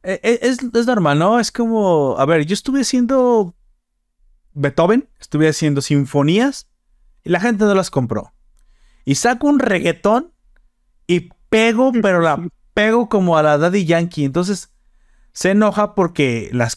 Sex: male